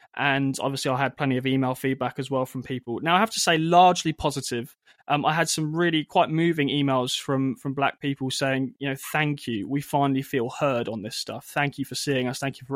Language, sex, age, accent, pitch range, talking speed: English, male, 20-39, British, 135-165 Hz, 240 wpm